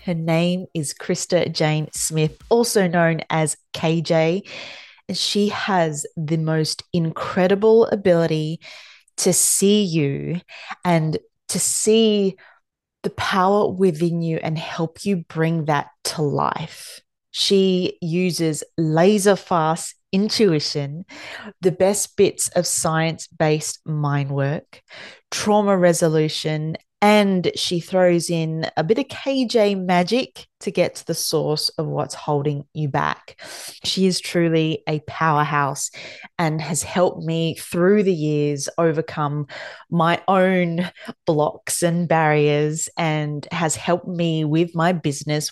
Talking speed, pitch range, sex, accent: 120 wpm, 155-190 Hz, female, Australian